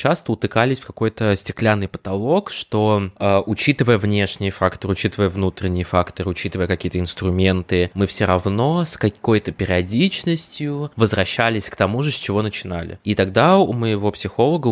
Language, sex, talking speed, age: Russian, male, 140 wpm, 20-39